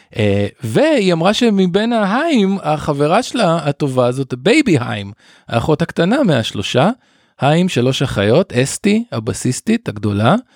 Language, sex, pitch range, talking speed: Hebrew, male, 110-145 Hz, 115 wpm